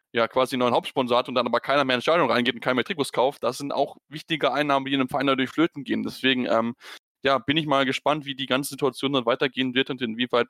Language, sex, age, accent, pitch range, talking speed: German, male, 10-29, German, 125-160 Hz, 255 wpm